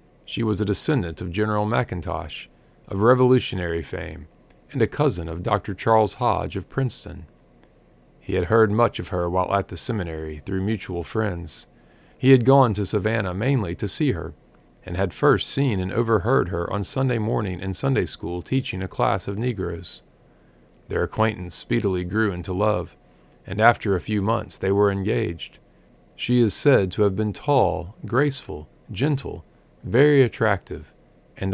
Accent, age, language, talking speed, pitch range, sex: American, 40-59, English, 160 wpm, 95-115 Hz, male